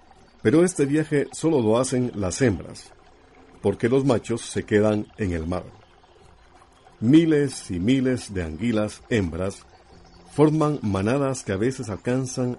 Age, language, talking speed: 50-69, Spanish, 135 wpm